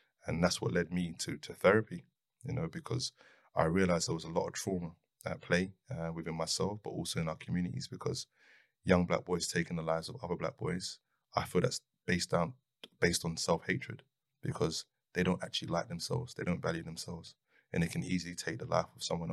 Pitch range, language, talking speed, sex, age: 85-95 Hz, English, 205 wpm, male, 20-39